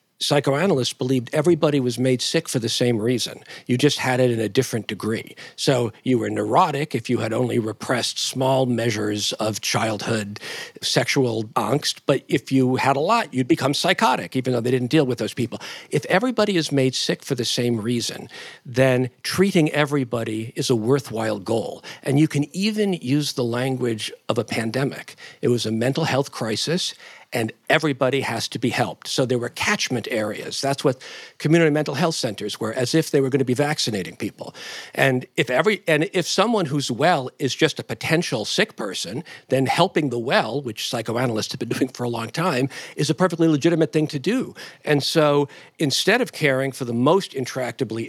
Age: 50-69